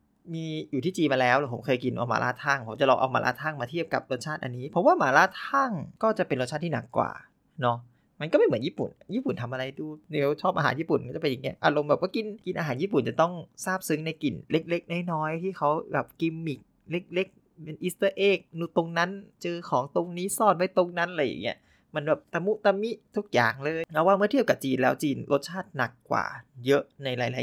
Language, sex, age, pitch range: Thai, male, 20-39, 130-170 Hz